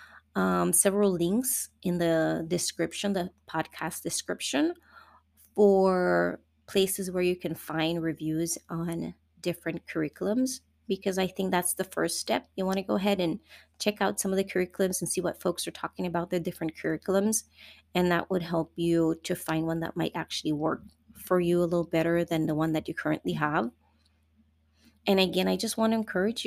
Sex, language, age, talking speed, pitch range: female, English, 30-49, 180 wpm, 160-190 Hz